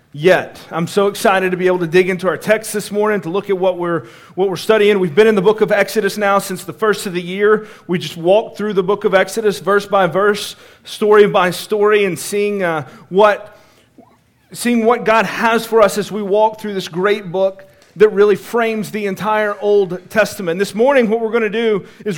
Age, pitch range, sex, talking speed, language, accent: 40-59, 170-215 Hz, male, 220 wpm, English, American